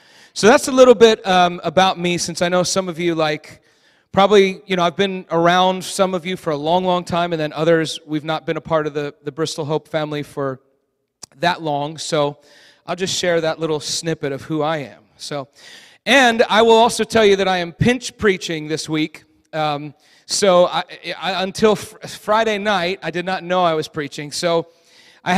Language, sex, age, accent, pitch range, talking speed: English, male, 40-59, American, 160-205 Hz, 200 wpm